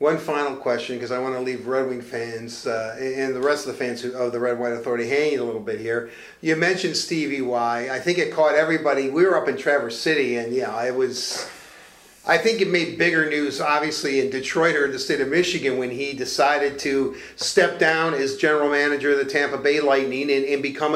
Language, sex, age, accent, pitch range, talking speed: English, male, 40-59, American, 130-190 Hz, 230 wpm